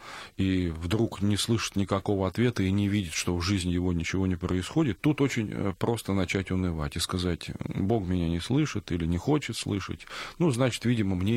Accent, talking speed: native, 185 wpm